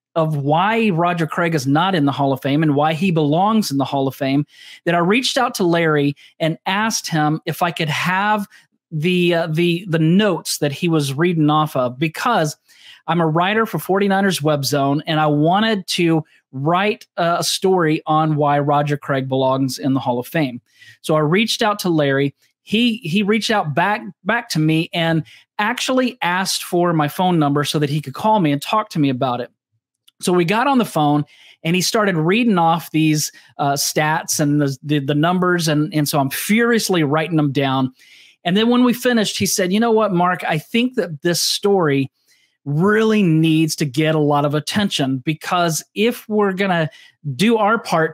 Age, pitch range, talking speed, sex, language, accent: 30-49, 150-195 Hz, 200 wpm, male, English, American